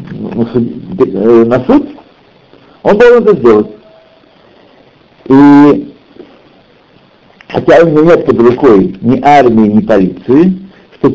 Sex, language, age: male, Russian, 60-79